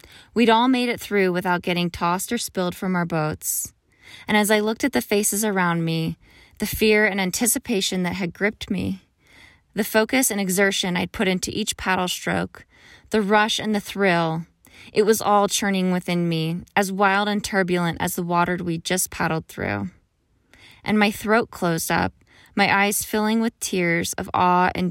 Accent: American